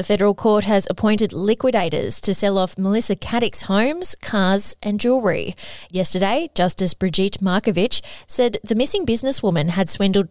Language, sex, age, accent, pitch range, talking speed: English, female, 30-49, Australian, 175-215 Hz, 145 wpm